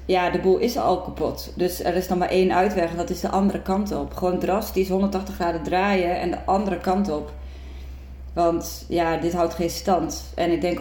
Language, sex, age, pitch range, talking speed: Dutch, female, 20-39, 160-185 Hz, 215 wpm